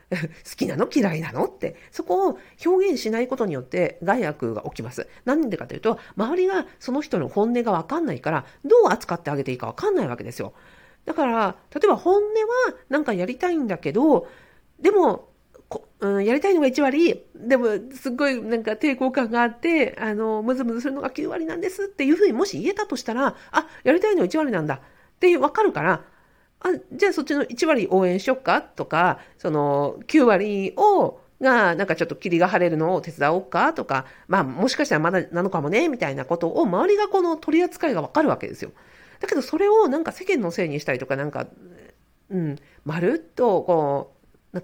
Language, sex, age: Japanese, female, 50-69